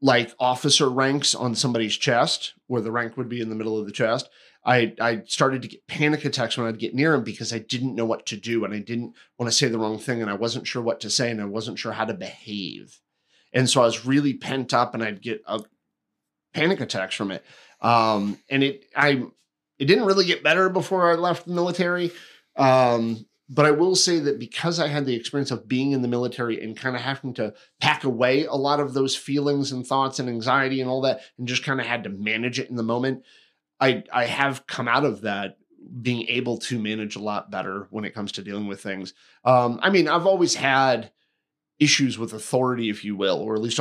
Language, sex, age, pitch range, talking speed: English, male, 30-49, 115-145 Hz, 235 wpm